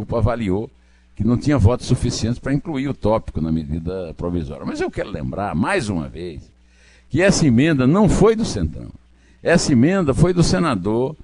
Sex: male